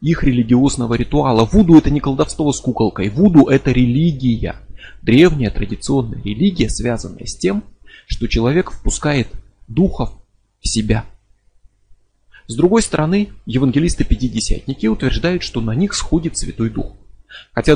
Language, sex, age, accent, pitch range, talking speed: Russian, male, 30-49, native, 110-145 Hz, 120 wpm